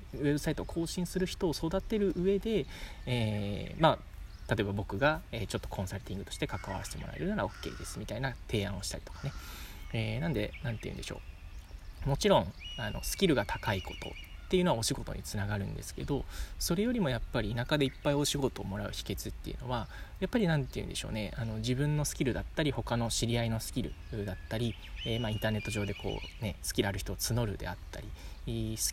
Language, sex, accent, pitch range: Japanese, male, native, 95-140 Hz